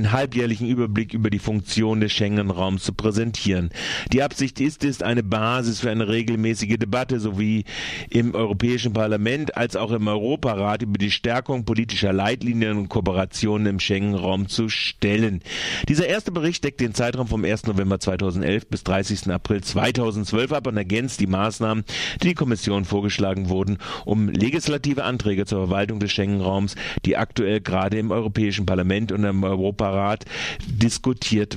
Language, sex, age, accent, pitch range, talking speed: German, male, 40-59, German, 95-115 Hz, 150 wpm